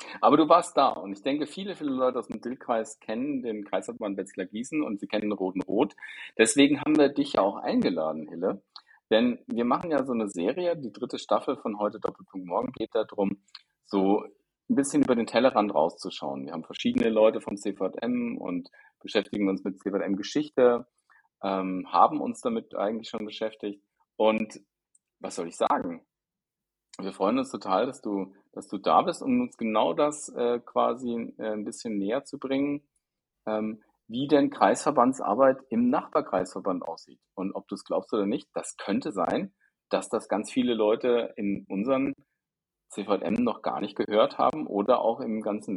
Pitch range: 105-145 Hz